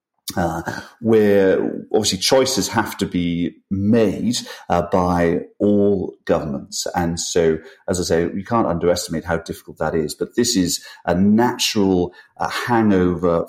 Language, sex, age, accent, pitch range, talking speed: English, male, 40-59, British, 90-110 Hz, 140 wpm